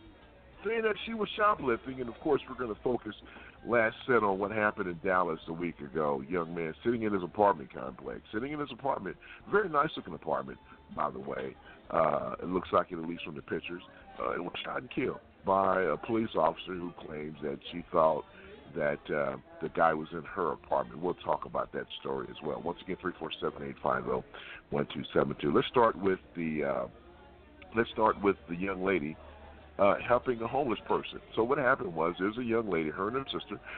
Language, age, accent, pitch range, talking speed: English, 50-69, American, 85-115 Hz, 195 wpm